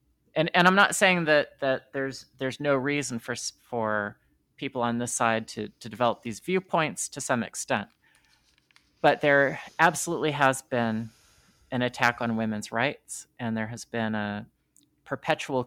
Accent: American